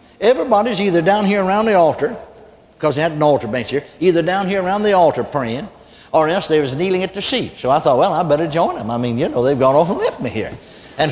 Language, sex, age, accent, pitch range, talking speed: English, male, 60-79, American, 140-180 Hz, 265 wpm